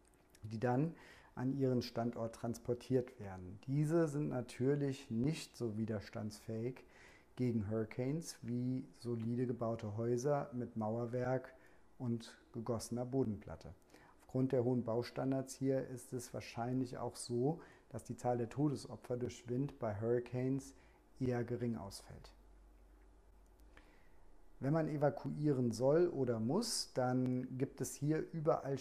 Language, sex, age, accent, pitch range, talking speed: German, male, 40-59, German, 115-135 Hz, 120 wpm